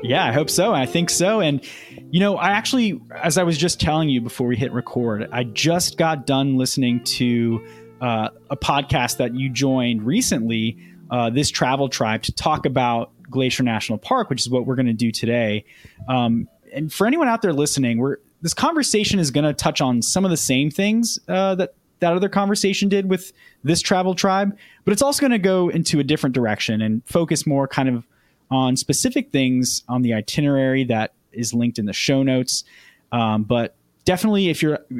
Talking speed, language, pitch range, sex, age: 200 wpm, English, 115-165 Hz, male, 20-39